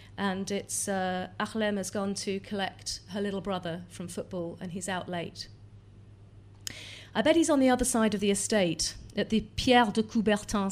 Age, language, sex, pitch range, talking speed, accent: 40-59, English, female, 170-215 Hz, 180 wpm, British